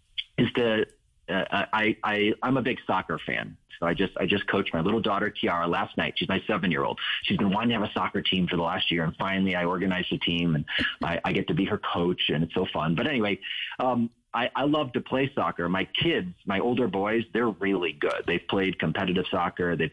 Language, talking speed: English, 230 wpm